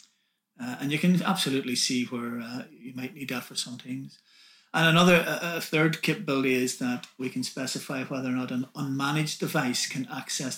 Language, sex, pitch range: Swedish, male, 130-180 Hz